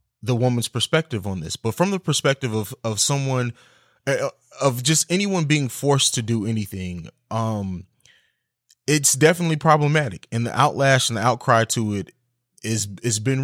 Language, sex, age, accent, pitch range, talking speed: English, male, 20-39, American, 115-140 Hz, 155 wpm